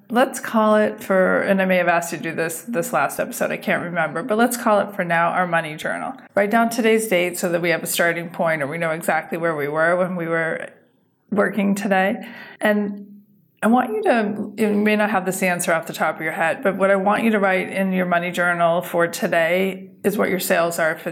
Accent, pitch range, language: American, 175-210 Hz, English